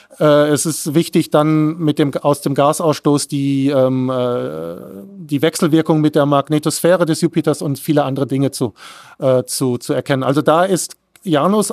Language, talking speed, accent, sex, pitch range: German, 160 wpm, German, male, 145-175 Hz